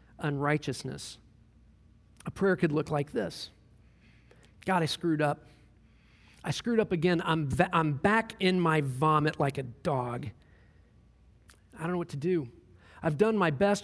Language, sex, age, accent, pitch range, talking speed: English, male, 40-59, American, 125-175 Hz, 150 wpm